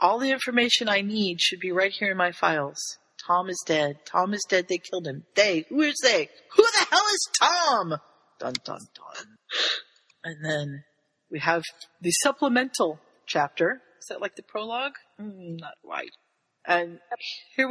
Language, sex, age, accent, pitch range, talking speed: English, female, 40-59, American, 165-215 Hz, 170 wpm